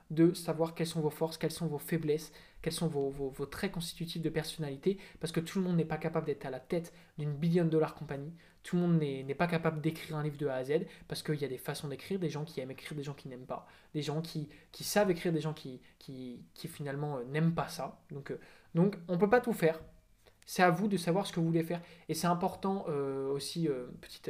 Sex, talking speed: male, 265 wpm